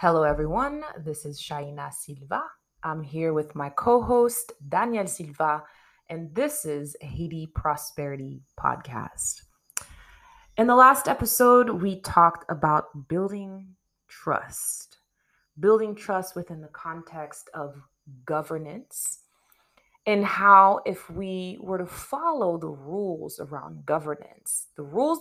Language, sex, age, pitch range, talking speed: English, female, 20-39, 150-210 Hz, 115 wpm